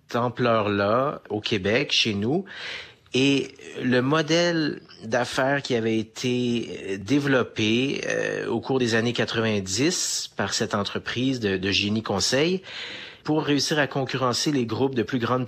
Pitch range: 105-135 Hz